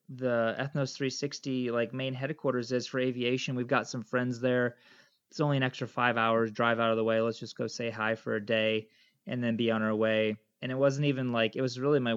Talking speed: 235 wpm